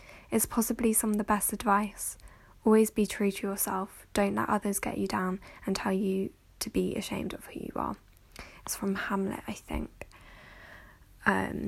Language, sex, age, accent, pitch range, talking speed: English, female, 10-29, British, 195-215 Hz, 175 wpm